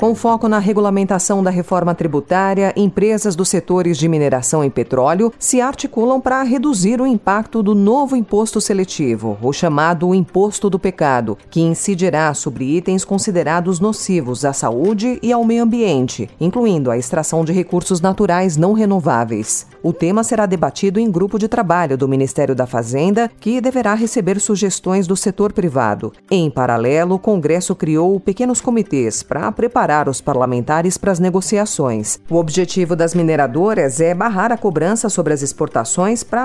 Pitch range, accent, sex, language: 150-215 Hz, Brazilian, female, Portuguese